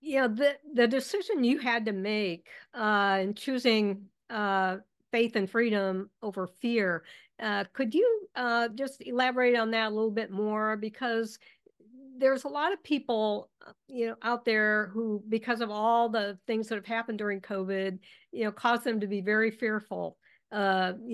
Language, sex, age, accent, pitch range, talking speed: English, female, 50-69, American, 195-230 Hz, 175 wpm